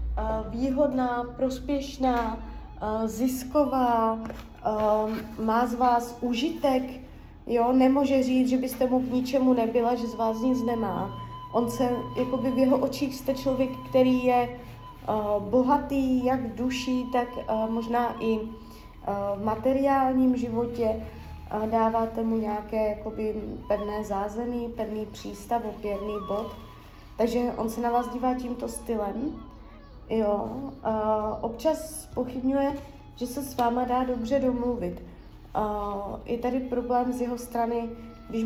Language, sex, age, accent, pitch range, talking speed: Czech, female, 20-39, native, 215-255 Hz, 120 wpm